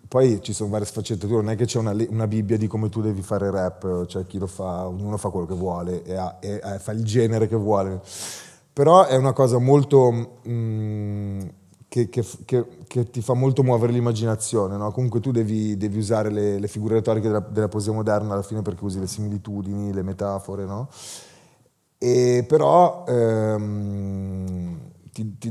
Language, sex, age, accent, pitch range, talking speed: English, male, 30-49, Italian, 100-120 Hz, 185 wpm